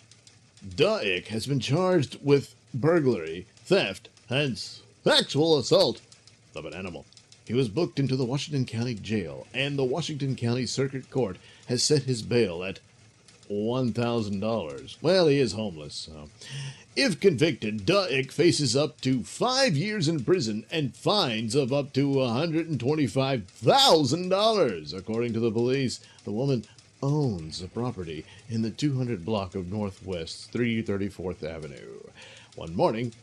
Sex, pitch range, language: male, 110-140 Hz, English